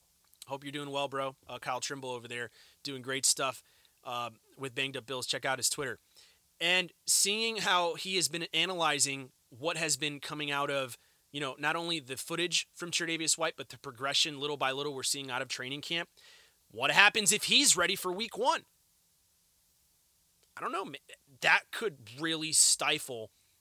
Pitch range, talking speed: 120-165 Hz, 180 wpm